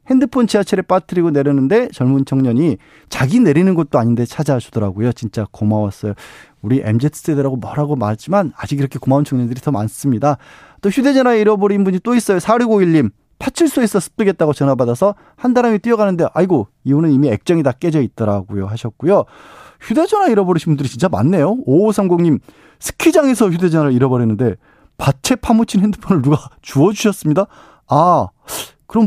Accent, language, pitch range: native, Korean, 135-205 Hz